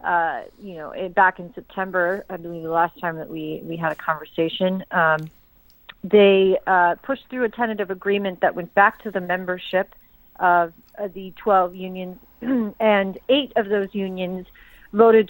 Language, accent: English, American